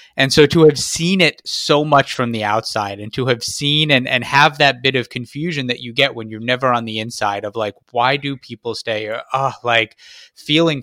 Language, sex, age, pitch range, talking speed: English, male, 20-39, 110-130 Hz, 225 wpm